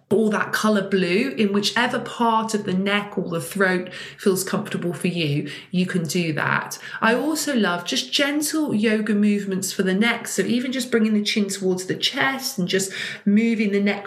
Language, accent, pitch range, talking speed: English, British, 180-215 Hz, 190 wpm